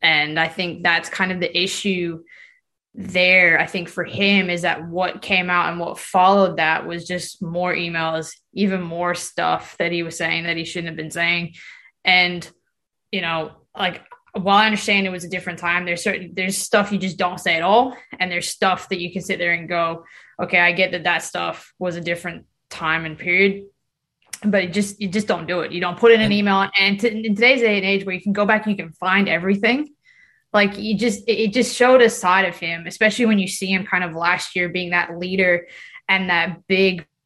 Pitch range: 175-200 Hz